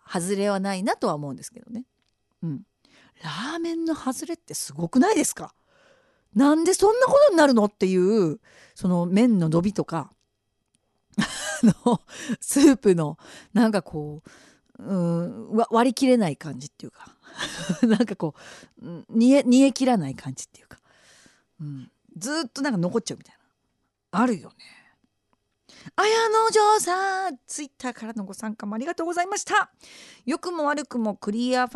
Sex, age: female, 40-59